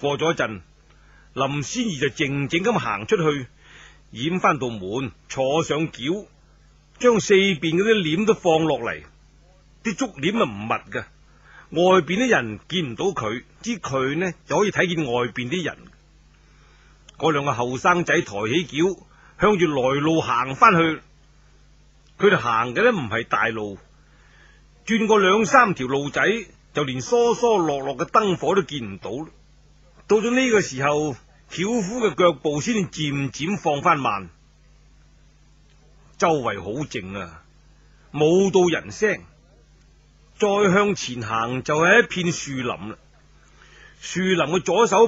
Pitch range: 135-200 Hz